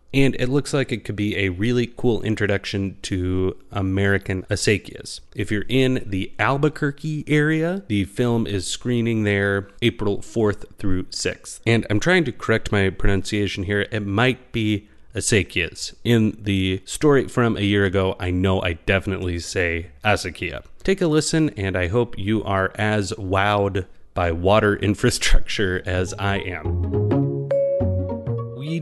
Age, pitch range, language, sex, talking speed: 30-49, 100-130 Hz, English, male, 150 wpm